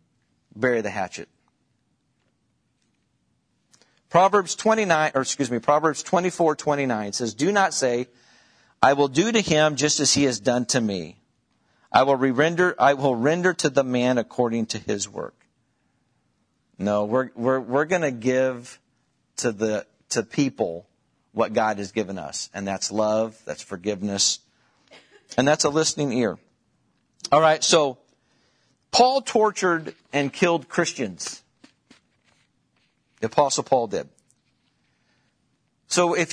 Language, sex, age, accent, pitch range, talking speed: English, male, 50-69, American, 120-170 Hz, 130 wpm